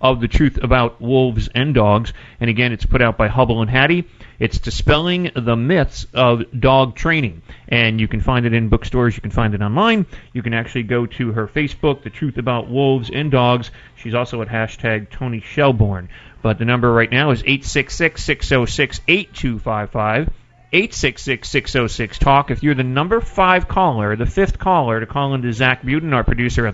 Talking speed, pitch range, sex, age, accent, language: 180 wpm, 115-140 Hz, male, 30-49, American, English